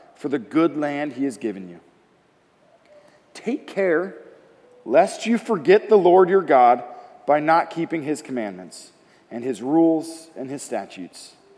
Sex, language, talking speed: male, English, 145 wpm